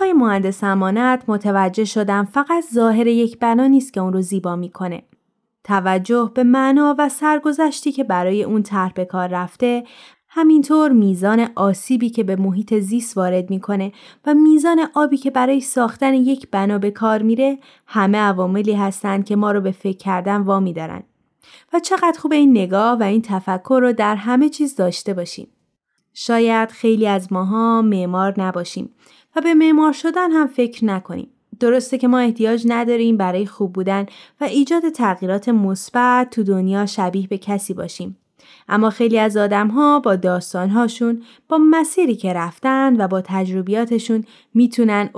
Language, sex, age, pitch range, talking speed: Persian, female, 20-39, 195-260 Hz, 155 wpm